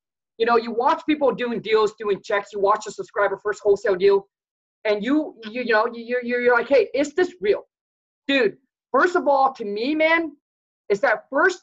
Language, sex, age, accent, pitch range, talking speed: English, male, 30-49, American, 225-300 Hz, 205 wpm